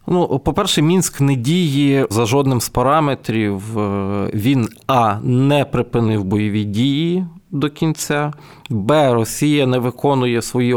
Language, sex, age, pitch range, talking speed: Ukrainian, male, 20-39, 110-135 Hz, 125 wpm